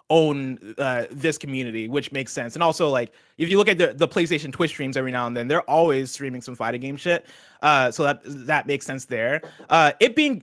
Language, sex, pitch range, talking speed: English, male, 130-165 Hz, 225 wpm